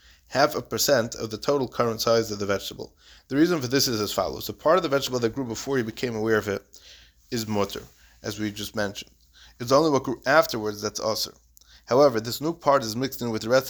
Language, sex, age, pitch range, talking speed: English, male, 30-49, 105-125 Hz, 240 wpm